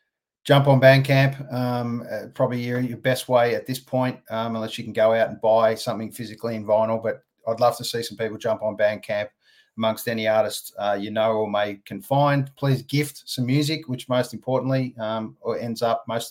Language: English